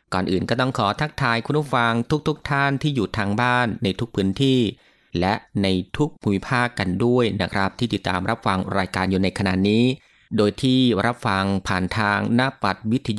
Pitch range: 100-125 Hz